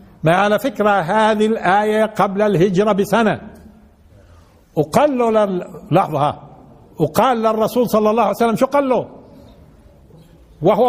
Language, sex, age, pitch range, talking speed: Arabic, male, 50-69, 160-255 Hz, 115 wpm